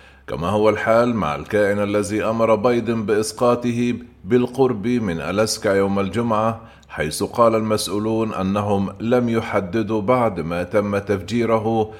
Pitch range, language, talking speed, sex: 100-115 Hz, Arabic, 120 wpm, male